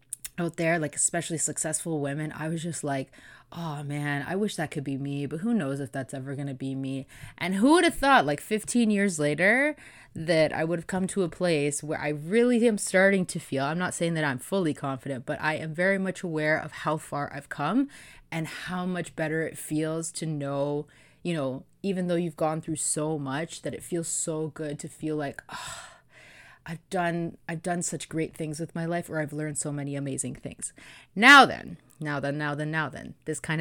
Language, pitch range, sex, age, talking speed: English, 145-180 Hz, female, 20-39, 220 wpm